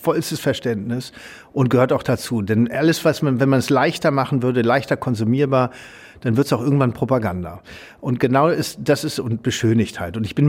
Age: 50-69